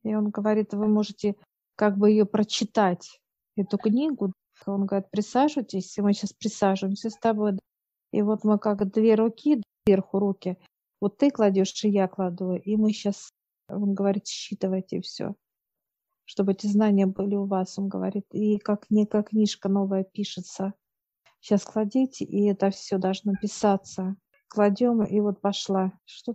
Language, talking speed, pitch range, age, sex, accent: Russian, 150 wpm, 195-215 Hz, 50-69, female, native